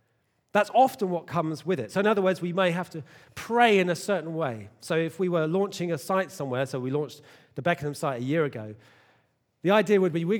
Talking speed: 235 wpm